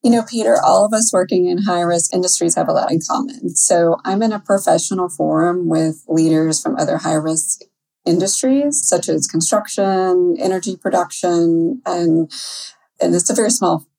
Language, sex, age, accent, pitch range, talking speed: English, female, 30-49, American, 160-195 Hz, 165 wpm